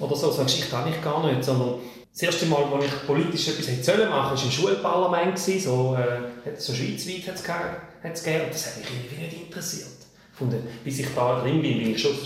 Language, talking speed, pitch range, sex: German, 210 wpm, 135-185 Hz, male